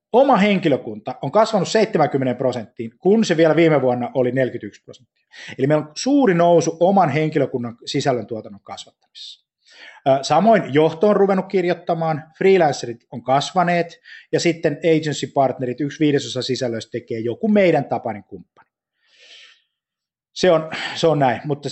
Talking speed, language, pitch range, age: 135 wpm, Finnish, 125-175 Hz, 20-39